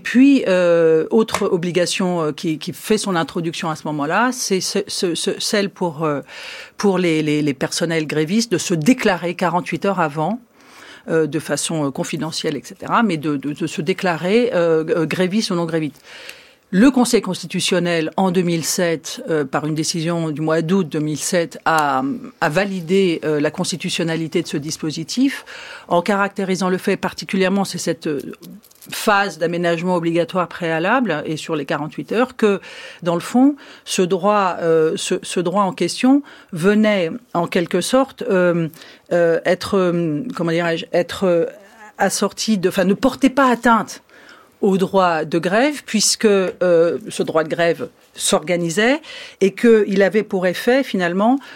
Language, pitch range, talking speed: French, 165-210 Hz, 160 wpm